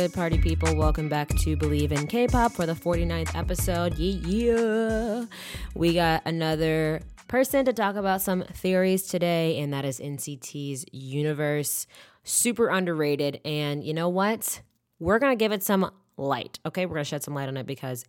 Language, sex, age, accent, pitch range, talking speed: English, female, 20-39, American, 140-195 Hz, 165 wpm